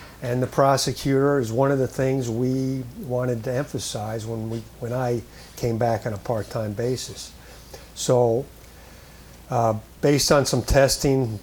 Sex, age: male, 50-69